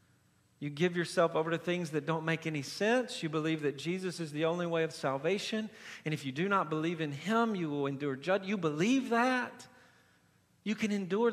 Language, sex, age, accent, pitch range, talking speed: English, male, 50-69, American, 135-185 Hz, 205 wpm